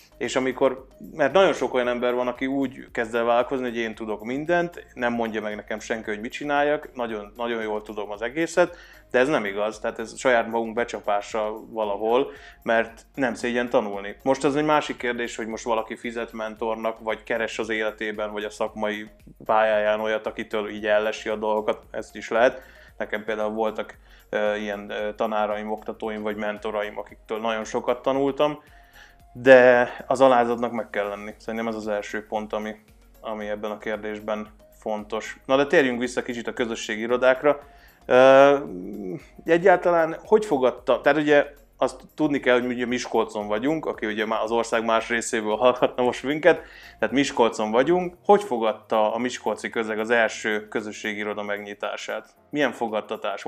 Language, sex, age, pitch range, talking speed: Hungarian, male, 20-39, 105-130 Hz, 165 wpm